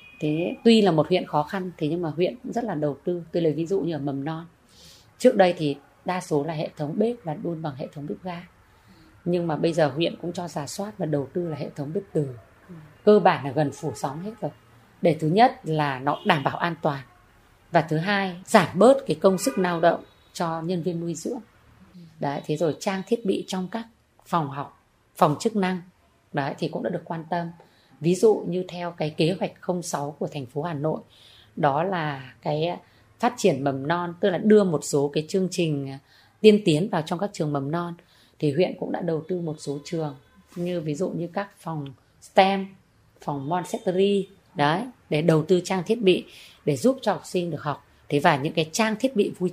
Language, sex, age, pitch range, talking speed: Vietnamese, female, 20-39, 150-190 Hz, 225 wpm